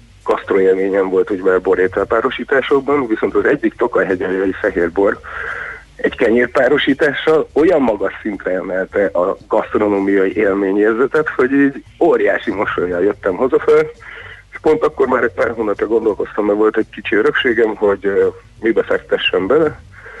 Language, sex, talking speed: Hungarian, male, 135 wpm